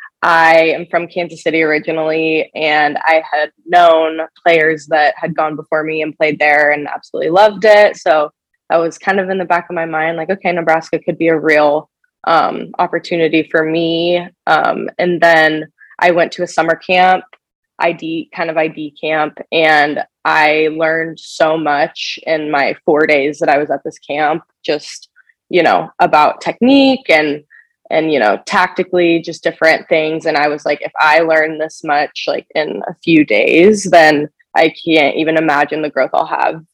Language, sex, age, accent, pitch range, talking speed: English, female, 20-39, American, 155-180 Hz, 180 wpm